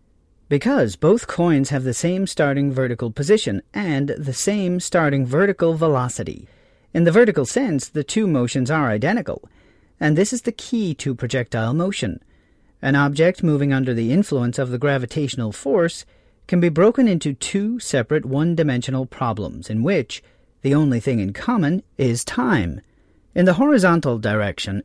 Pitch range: 125-180 Hz